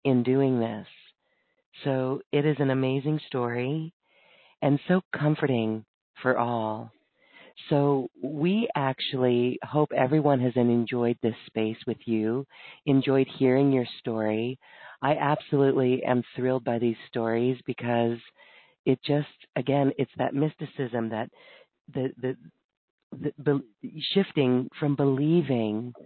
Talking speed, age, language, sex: 115 wpm, 40-59, English, female